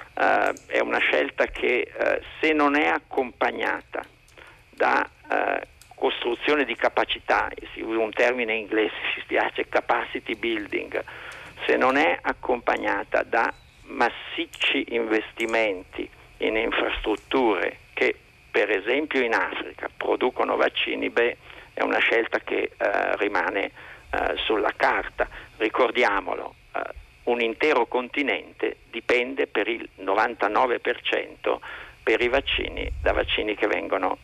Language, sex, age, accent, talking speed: Italian, male, 50-69, native, 110 wpm